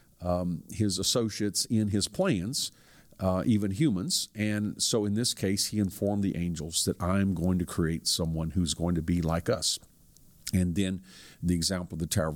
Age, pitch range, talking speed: 50-69, 90-105 Hz, 180 wpm